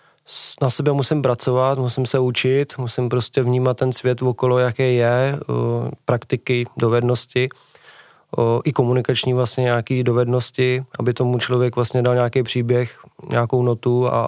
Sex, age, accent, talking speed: male, 20-39, native, 145 wpm